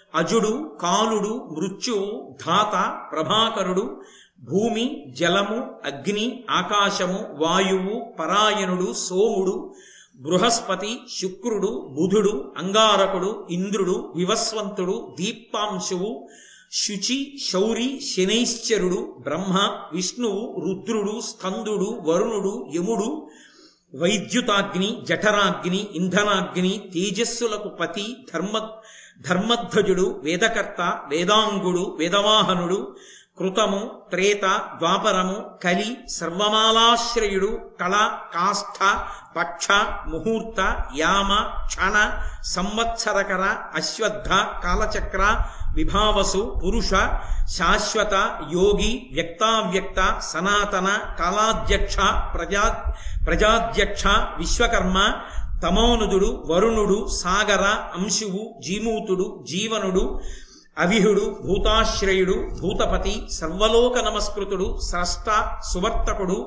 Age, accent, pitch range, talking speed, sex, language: 50-69, native, 185-220 Hz, 60 wpm, male, Telugu